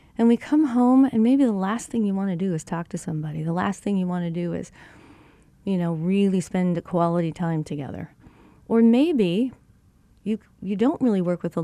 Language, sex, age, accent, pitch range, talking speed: English, female, 40-59, American, 185-240 Hz, 215 wpm